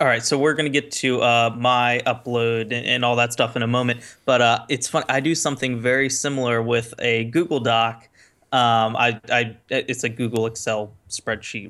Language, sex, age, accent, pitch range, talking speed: English, male, 20-39, American, 115-130 Hz, 200 wpm